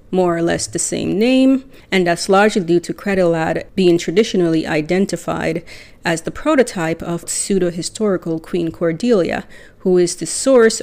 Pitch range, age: 165-200 Hz, 30-49